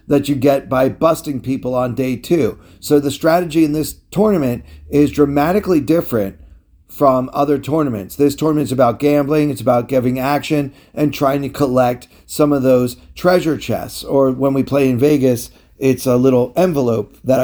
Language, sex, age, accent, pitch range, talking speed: English, male, 40-59, American, 120-150 Hz, 170 wpm